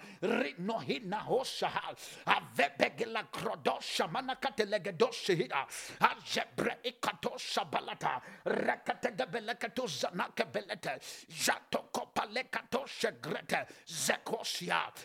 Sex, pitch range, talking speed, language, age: male, 230-275 Hz, 85 wpm, English, 50-69